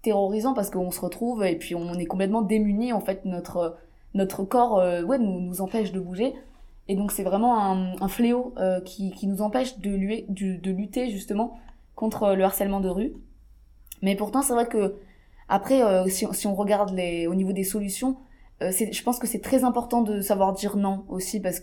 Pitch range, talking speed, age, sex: 185-225 Hz, 210 wpm, 20-39, female